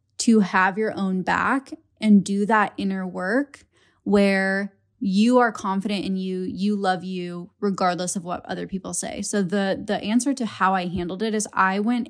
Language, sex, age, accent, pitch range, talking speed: English, female, 10-29, American, 180-210 Hz, 185 wpm